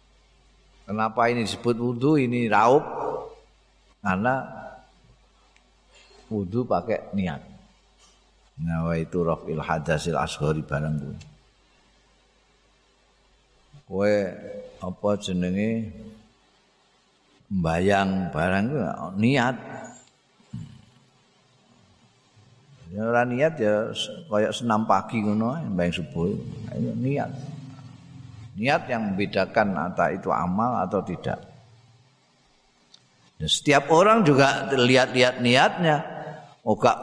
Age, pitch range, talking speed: 50-69, 100-130 Hz, 75 wpm